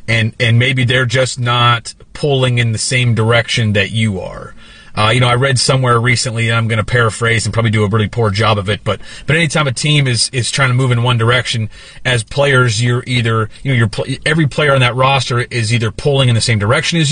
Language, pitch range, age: English, 115-135 Hz, 30-49